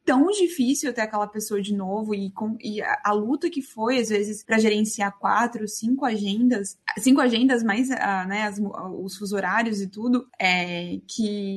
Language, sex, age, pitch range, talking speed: Portuguese, female, 20-39, 195-225 Hz, 185 wpm